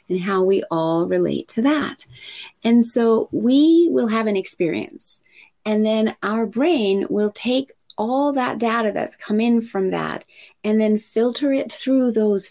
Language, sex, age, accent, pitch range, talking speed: English, female, 30-49, American, 185-235 Hz, 165 wpm